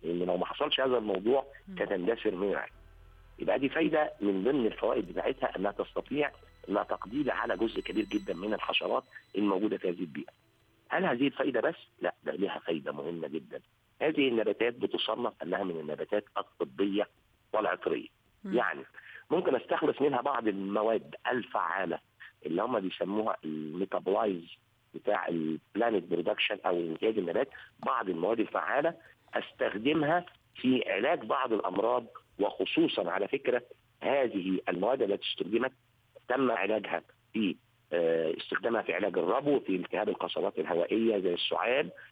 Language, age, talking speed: Arabic, 50-69, 130 wpm